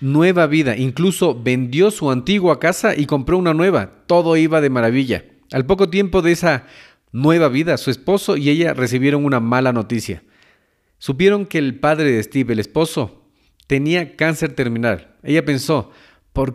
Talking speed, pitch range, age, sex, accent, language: 160 wpm, 130-170 Hz, 40-59, male, Mexican, Spanish